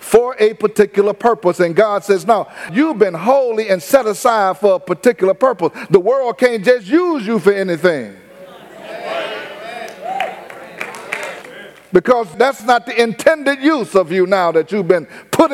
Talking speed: 150 wpm